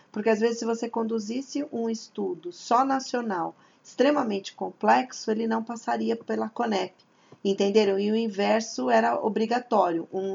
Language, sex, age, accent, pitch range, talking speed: Portuguese, female, 40-59, Brazilian, 180-225 Hz, 140 wpm